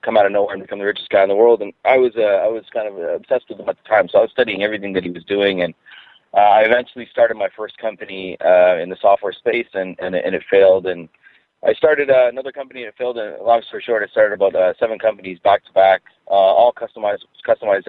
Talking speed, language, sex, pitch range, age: 260 wpm, English, male, 95-135 Hz, 30-49